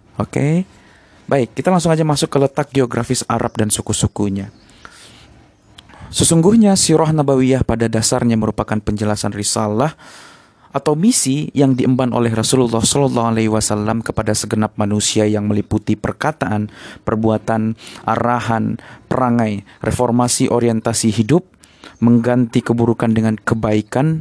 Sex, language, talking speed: male, Indonesian, 115 wpm